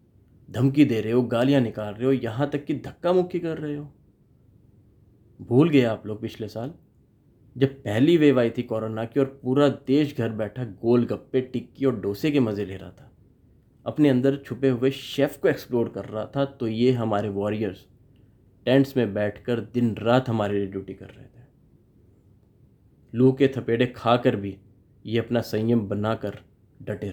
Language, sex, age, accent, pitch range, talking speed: Hindi, male, 30-49, native, 105-130 Hz, 175 wpm